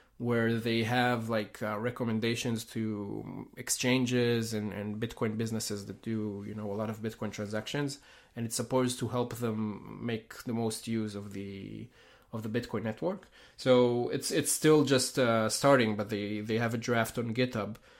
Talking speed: 175 wpm